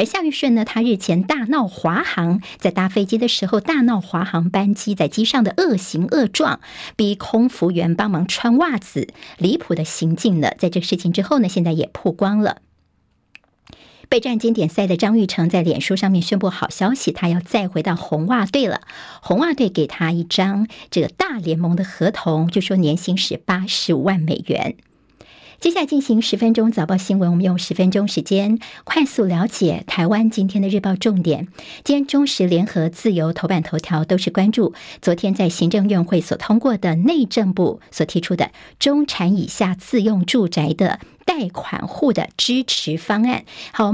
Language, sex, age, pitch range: Chinese, male, 50-69, 175-225 Hz